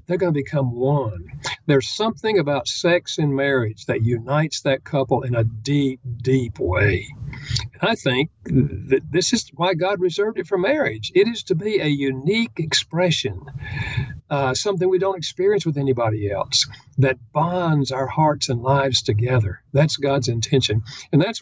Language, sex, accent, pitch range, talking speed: English, male, American, 125-160 Hz, 160 wpm